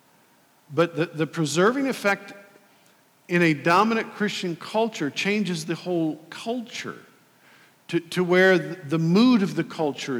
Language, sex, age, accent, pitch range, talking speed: English, male, 50-69, American, 155-200 Hz, 120 wpm